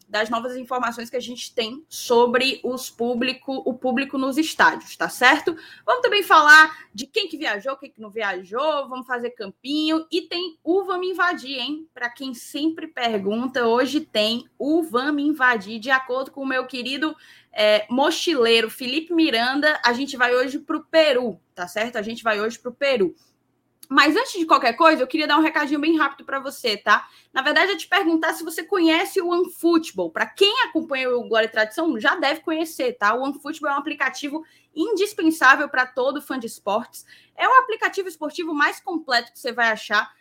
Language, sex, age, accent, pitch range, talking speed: Portuguese, female, 20-39, Brazilian, 240-320 Hz, 190 wpm